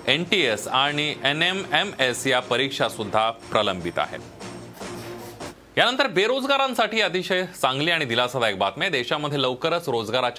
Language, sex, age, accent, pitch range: Marathi, male, 30-49, native, 120-165 Hz